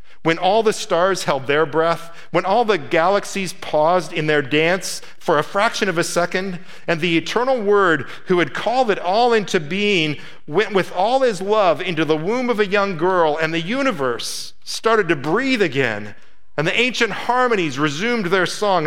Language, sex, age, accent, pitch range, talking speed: English, male, 50-69, American, 140-180 Hz, 185 wpm